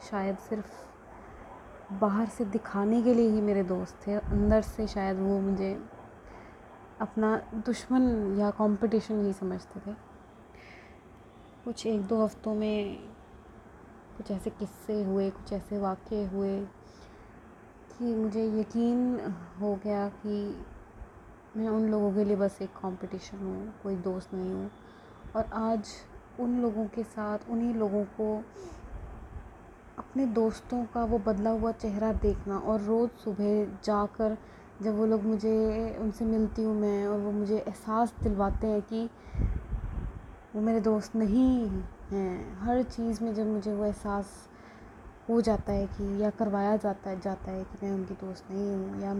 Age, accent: 20-39, native